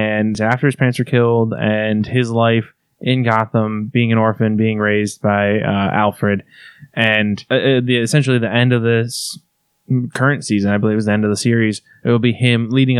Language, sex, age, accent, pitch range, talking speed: English, male, 20-39, American, 110-130 Hz, 200 wpm